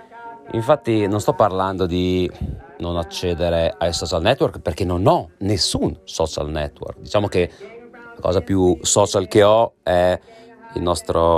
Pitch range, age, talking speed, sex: 85-135 Hz, 30-49, 140 wpm, male